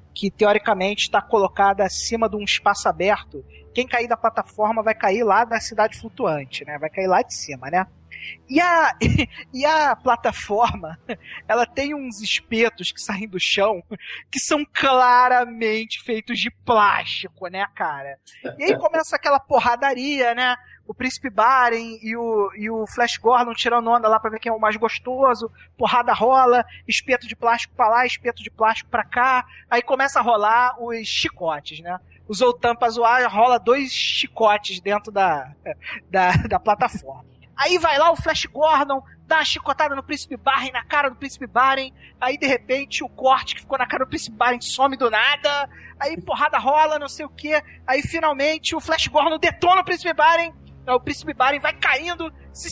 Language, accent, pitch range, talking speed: Portuguese, Brazilian, 200-275 Hz, 180 wpm